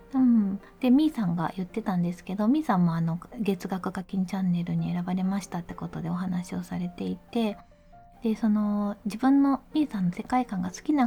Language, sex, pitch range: Japanese, female, 185-250 Hz